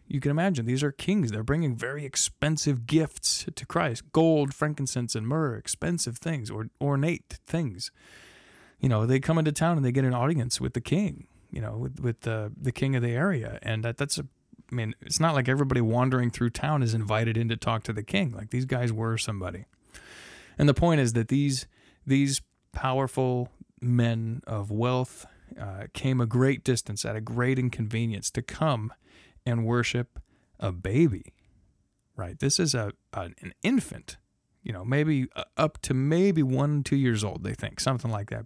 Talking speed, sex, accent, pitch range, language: 185 wpm, male, American, 115-140 Hz, English